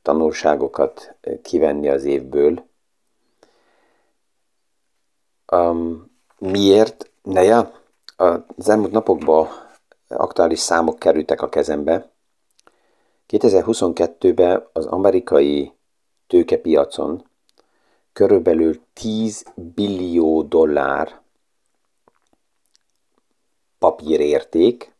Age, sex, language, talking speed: 50-69, male, Hungarian, 60 wpm